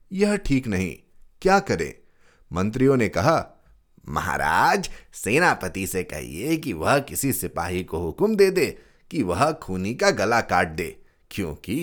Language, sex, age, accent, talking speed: Hindi, male, 30-49, native, 140 wpm